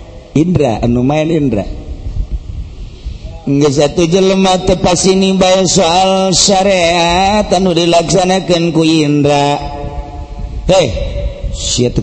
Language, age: Indonesian, 50-69